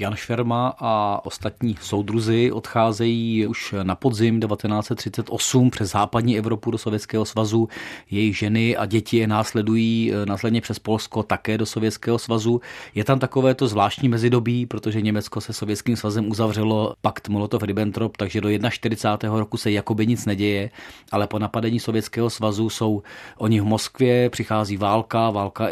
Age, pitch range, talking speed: 30-49, 105-120 Hz, 145 wpm